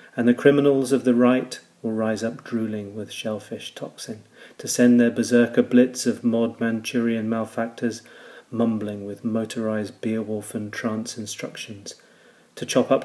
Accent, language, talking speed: British, English, 145 wpm